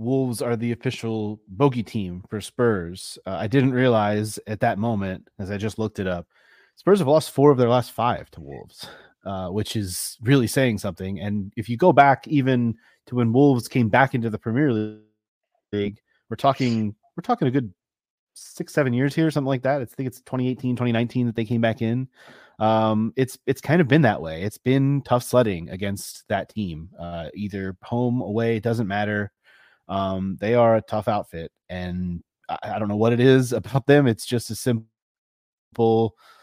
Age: 30-49